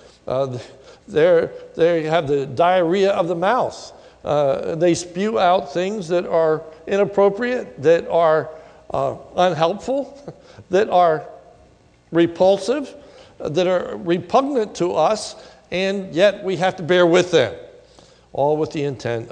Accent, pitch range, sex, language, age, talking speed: American, 145-195 Hz, male, English, 60-79, 125 wpm